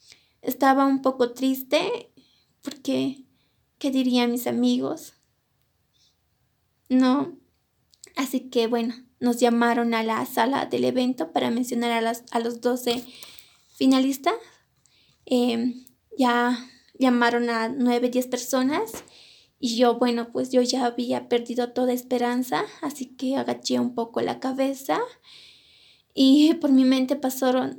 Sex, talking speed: female, 125 wpm